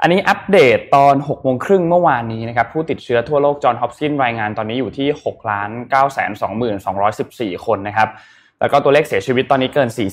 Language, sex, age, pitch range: Thai, male, 20-39, 110-140 Hz